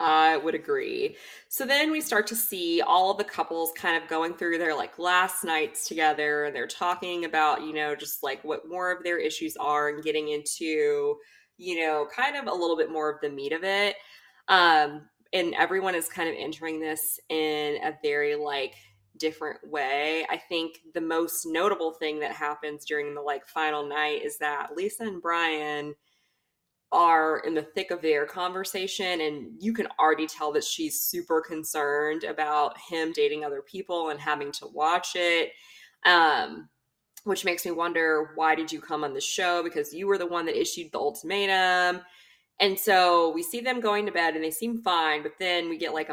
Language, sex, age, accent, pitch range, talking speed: English, female, 20-39, American, 150-195 Hz, 190 wpm